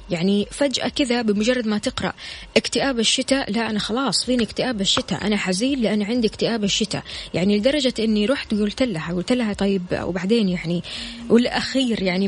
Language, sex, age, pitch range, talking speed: Arabic, female, 20-39, 190-240 Hz, 160 wpm